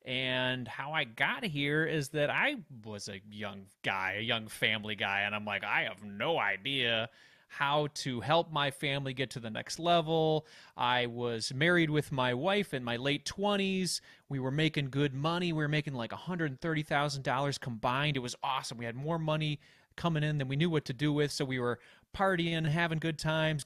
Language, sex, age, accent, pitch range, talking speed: English, male, 30-49, American, 135-175 Hz, 195 wpm